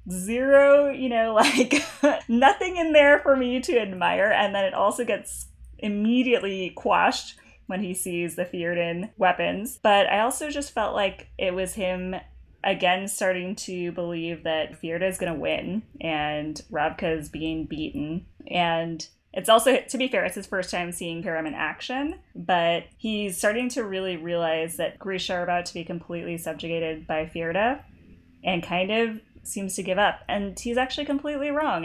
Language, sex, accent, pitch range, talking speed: English, female, American, 160-215 Hz, 165 wpm